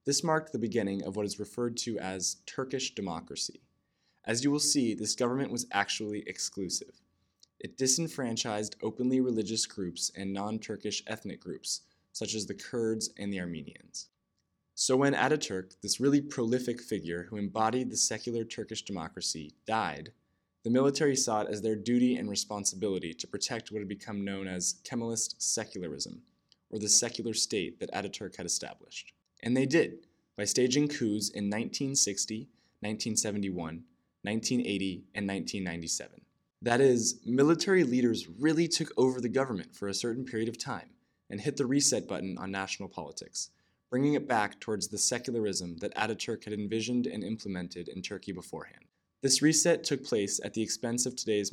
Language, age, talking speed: English, 20-39, 160 wpm